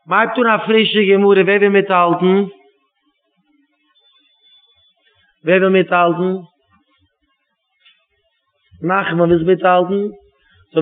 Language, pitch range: English, 160-200 Hz